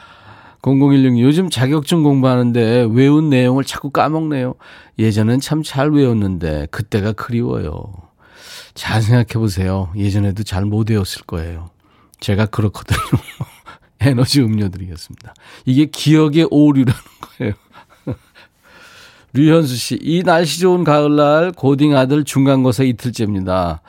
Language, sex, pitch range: Korean, male, 100-140 Hz